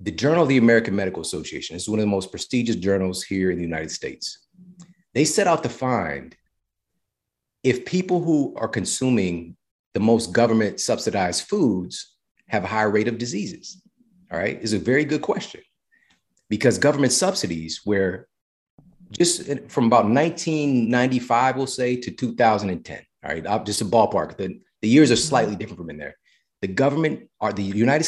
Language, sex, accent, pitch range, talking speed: English, male, American, 105-145 Hz, 165 wpm